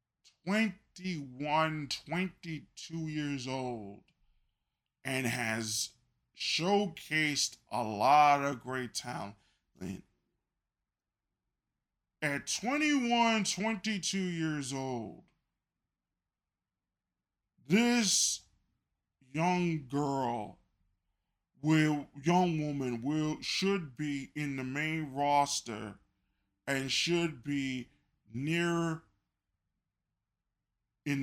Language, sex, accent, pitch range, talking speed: English, male, American, 115-160 Hz, 75 wpm